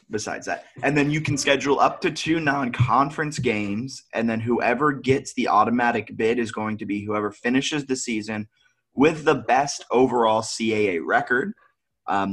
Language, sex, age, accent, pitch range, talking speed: English, male, 20-39, American, 105-140 Hz, 165 wpm